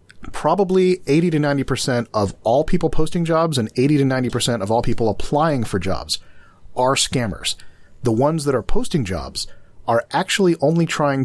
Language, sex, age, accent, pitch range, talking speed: English, male, 40-59, American, 105-135 Hz, 165 wpm